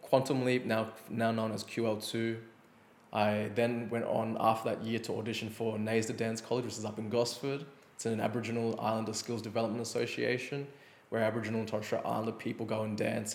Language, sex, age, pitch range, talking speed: English, male, 20-39, 105-115 Hz, 190 wpm